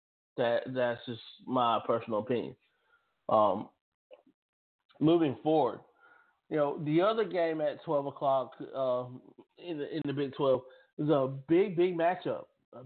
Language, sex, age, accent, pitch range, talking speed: English, male, 20-39, American, 125-165 Hz, 140 wpm